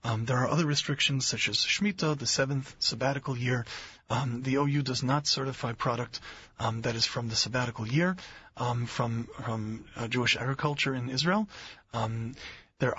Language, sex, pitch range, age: English, male, 115-140 Hz, 40-59